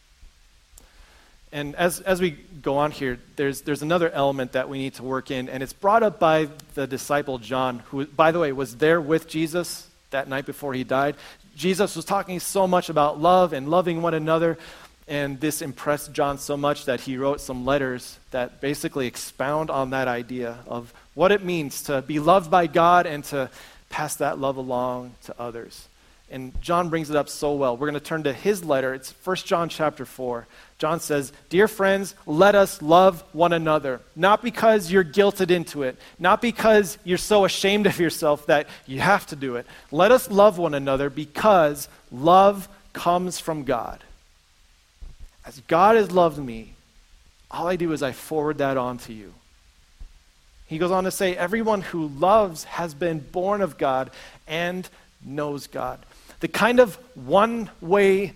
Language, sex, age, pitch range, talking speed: English, male, 40-59, 130-180 Hz, 180 wpm